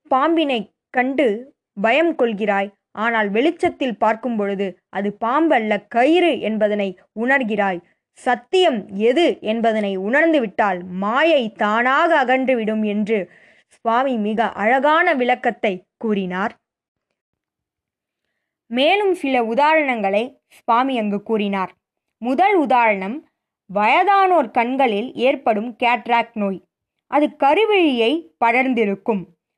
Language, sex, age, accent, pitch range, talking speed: Tamil, female, 20-39, native, 210-285 Hz, 85 wpm